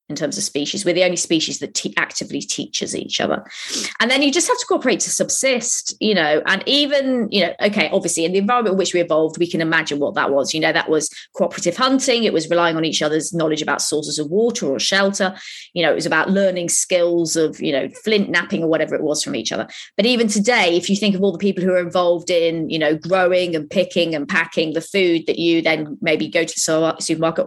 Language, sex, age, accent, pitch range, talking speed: English, female, 20-39, British, 170-220 Hz, 245 wpm